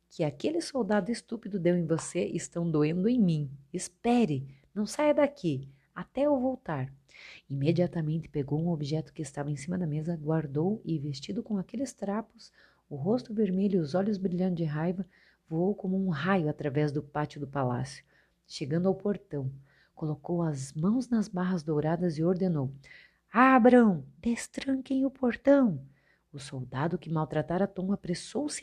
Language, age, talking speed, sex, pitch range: Portuguese, 40-59, 155 wpm, female, 155-230 Hz